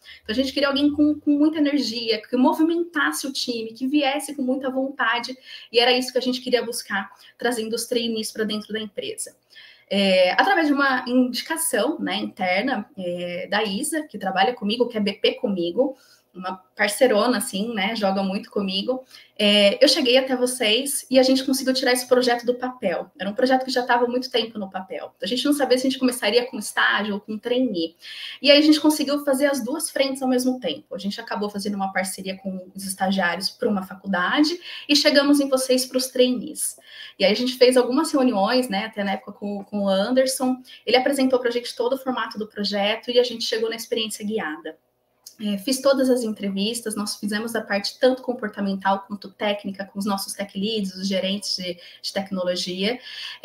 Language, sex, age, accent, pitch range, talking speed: Portuguese, female, 20-39, Brazilian, 205-265 Hz, 200 wpm